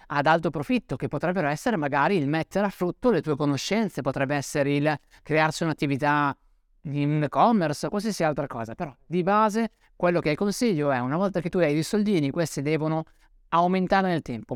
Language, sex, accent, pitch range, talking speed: Italian, male, native, 135-175 Hz, 180 wpm